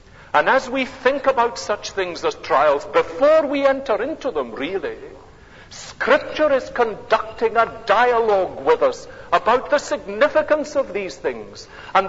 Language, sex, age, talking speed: English, male, 60-79, 145 wpm